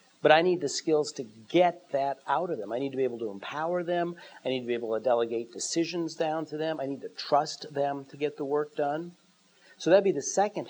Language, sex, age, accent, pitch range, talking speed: English, male, 50-69, American, 140-165 Hz, 260 wpm